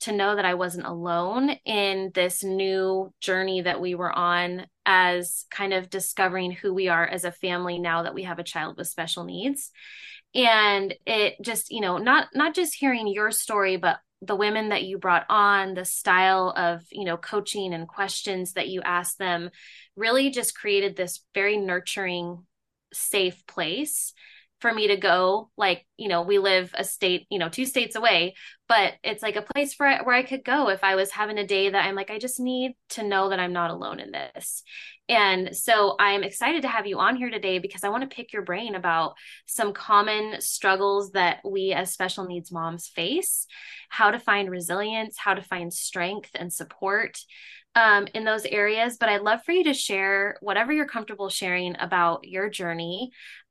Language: English